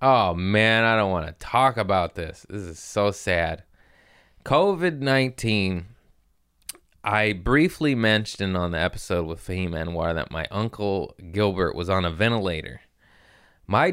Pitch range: 85-110 Hz